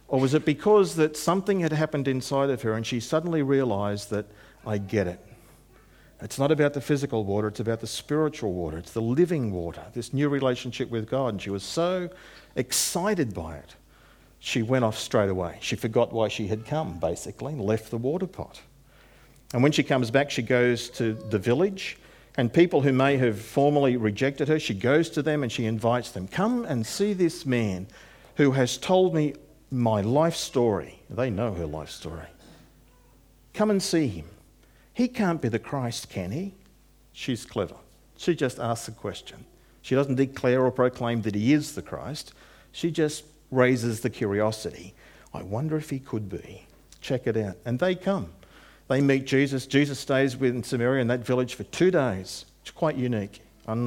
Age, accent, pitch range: 50-69, Australian, 110-145 Hz